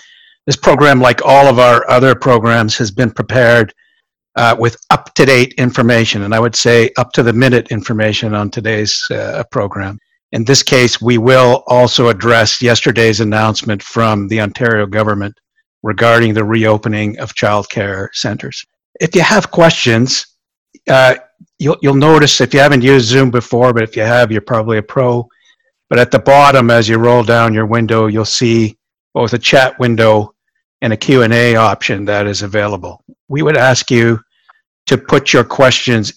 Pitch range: 110-130 Hz